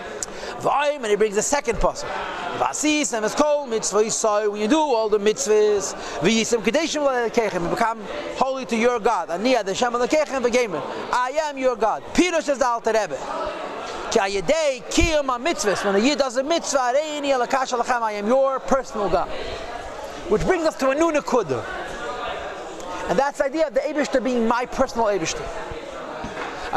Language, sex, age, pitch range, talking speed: English, male, 40-59, 220-285 Hz, 110 wpm